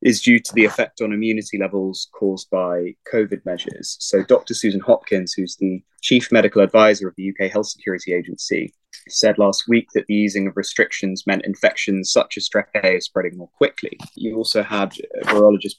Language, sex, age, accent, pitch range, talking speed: English, male, 20-39, British, 95-115 Hz, 180 wpm